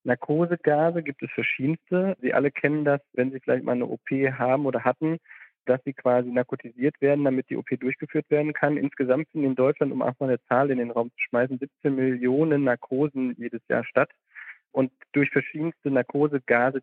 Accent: German